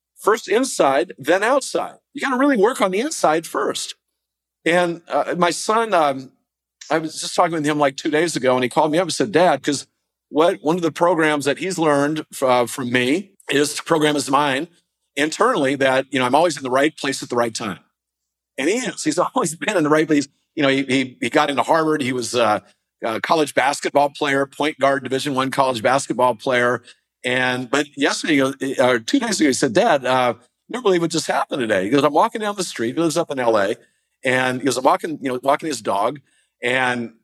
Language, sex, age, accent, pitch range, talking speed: English, male, 50-69, American, 125-160 Hz, 225 wpm